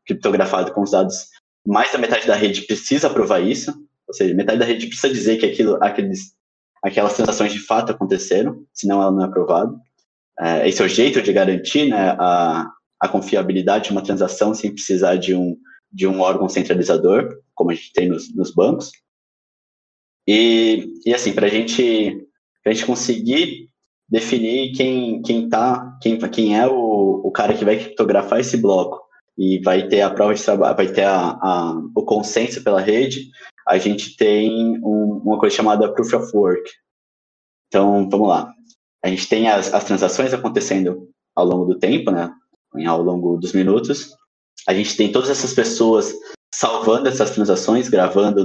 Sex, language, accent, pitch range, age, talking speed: male, Portuguese, Brazilian, 95-130 Hz, 20-39, 170 wpm